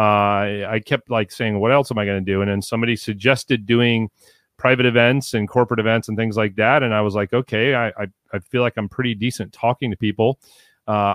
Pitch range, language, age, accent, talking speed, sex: 105-120 Hz, English, 40-59, American, 230 wpm, male